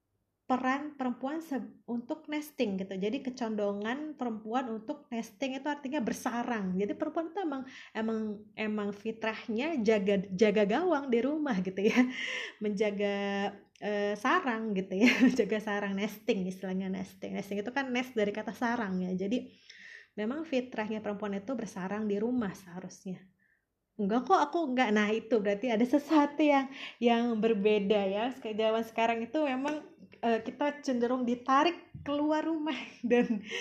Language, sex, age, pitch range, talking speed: Indonesian, female, 20-39, 205-270 Hz, 140 wpm